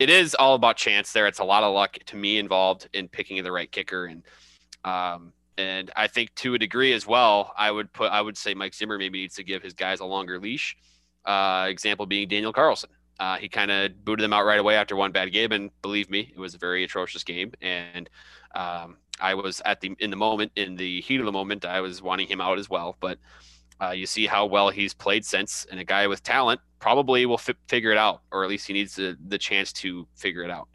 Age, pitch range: 20-39, 90-110 Hz